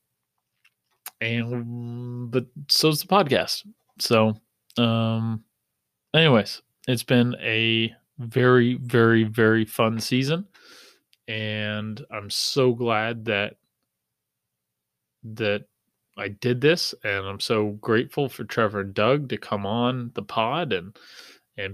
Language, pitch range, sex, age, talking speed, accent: English, 110-130 Hz, male, 30-49, 115 wpm, American